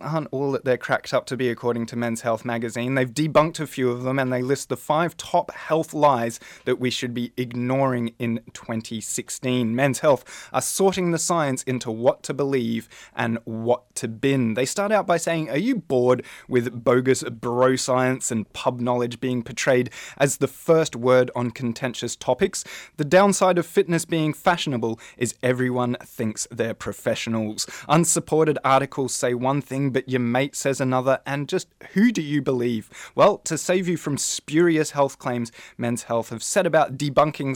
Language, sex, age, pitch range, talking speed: English, male, 20-39, 120-155 Hz, 180 wpm